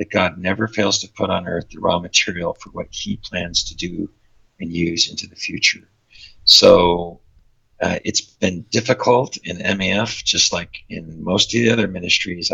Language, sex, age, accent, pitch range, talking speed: English, male, 50-69, American, 90-110 Hz, 175 wpm